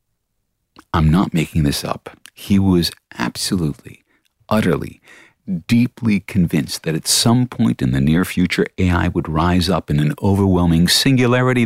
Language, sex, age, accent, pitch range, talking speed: English, male, 50-69, American, 90-130 Hz, 140 wpm